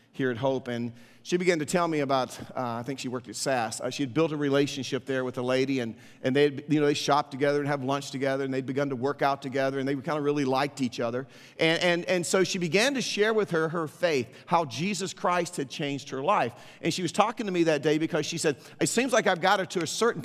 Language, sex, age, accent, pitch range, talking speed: English, male, 40-59, American, 135-180 Hz, 275 wpm